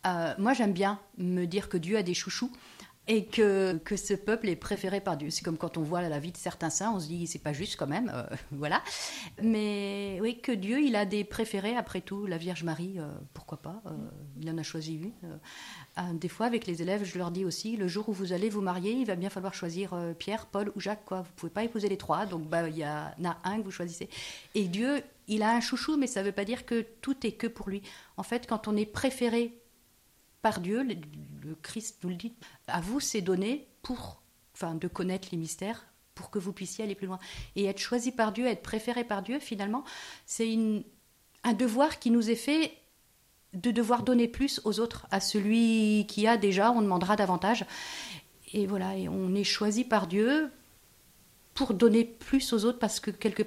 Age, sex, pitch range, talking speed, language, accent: 50-69, female, 180-230 Hz, 225 wpm, French, French